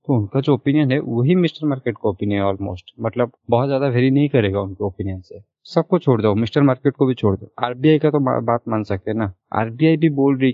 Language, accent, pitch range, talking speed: Hindi, native, 110-145 Hz, 240 wpm